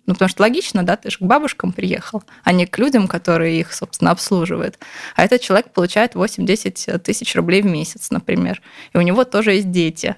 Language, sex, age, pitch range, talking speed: Russian, female, 20-39, 180-220 Hz, 200 wpm